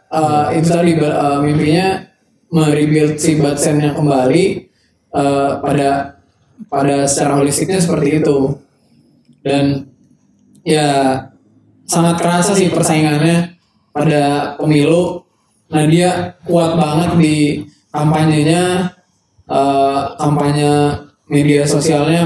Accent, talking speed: native, 90 wpm